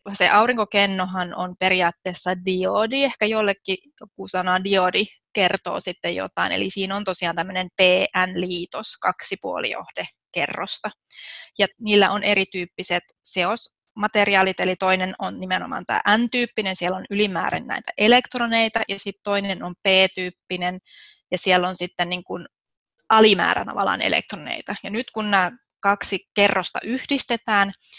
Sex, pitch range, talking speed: female, 185-210 Hz, 115 wpm